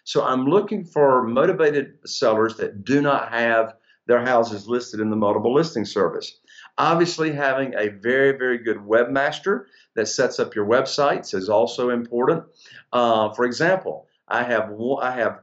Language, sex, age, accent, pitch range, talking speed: English, male, 50-69, American, 110-145 Hz, 160 wpm